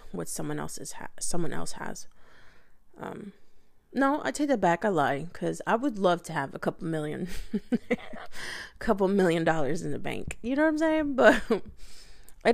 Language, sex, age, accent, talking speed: English, female, 20-39, American, 180 wpm